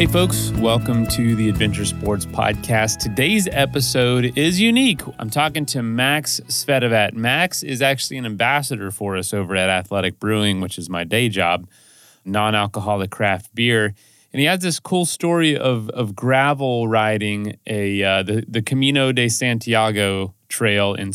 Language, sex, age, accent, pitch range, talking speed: English, male, 30-49, American, 100-130 Hz, 155 wpm